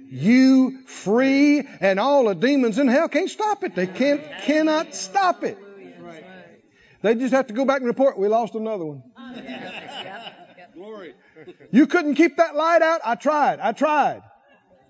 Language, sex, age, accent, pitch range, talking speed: English, male, 50-69, American, 200-310 Hz, 155 wpm